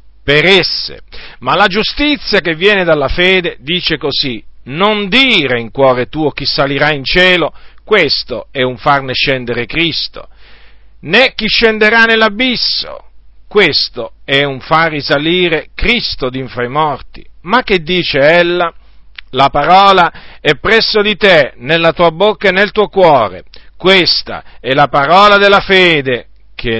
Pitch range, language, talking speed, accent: 140-200 Hz, Italian, 145 wpm, native